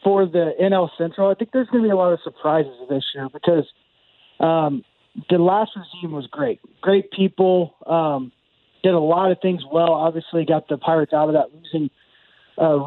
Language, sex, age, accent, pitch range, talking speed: English, male, 20-39, American, 155-180 Hz, 190 wpm